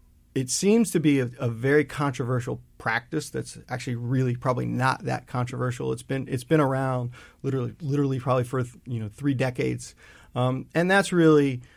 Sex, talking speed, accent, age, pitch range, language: male, 170 wpm, American, 40-59, 120-135 Hz, English